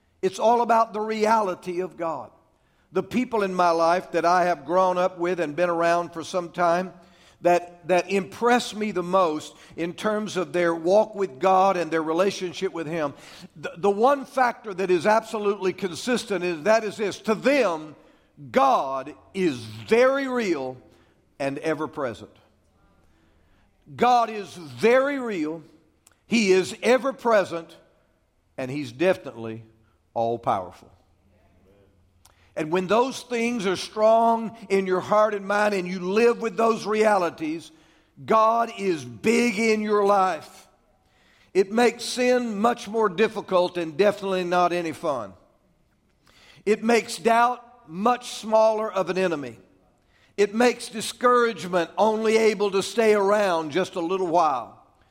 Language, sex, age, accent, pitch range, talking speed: English, male, 50-69, American, 160-220 Hz, 140 wpm